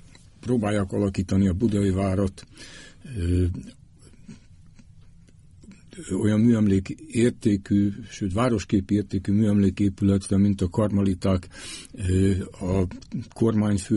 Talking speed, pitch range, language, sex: 75 wpm, 95-110 Hz, Hungarian, male